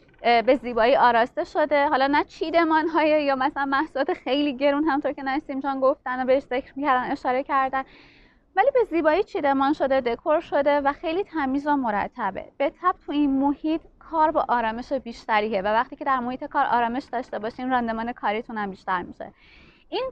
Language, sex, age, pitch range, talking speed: Persian, female, 20-39, 235-285 Hz, 175 wpm